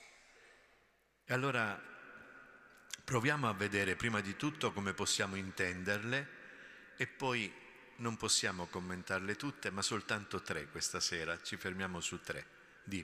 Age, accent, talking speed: 50-69, native, 125 wpm